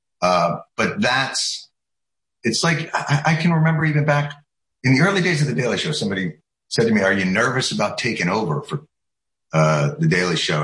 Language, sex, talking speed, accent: English, male, 190 wpm, American